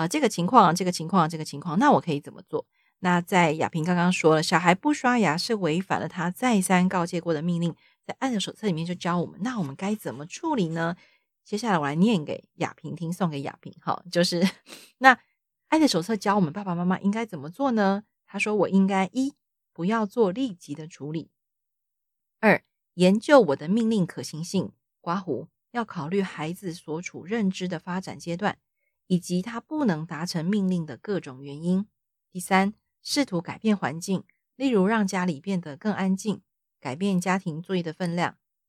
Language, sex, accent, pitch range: Chinese, female, native, 165-210 Hz